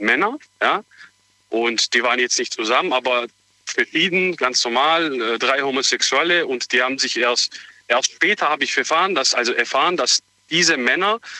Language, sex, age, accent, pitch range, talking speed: German, male, 40-59, German, 125-195 Hz, 165 wpm